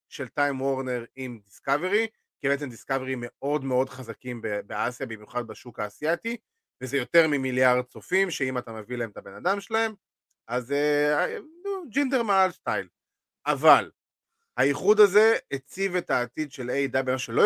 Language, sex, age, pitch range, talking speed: Hebrew, male, 30-49, 125-170 Hz, 140 wpm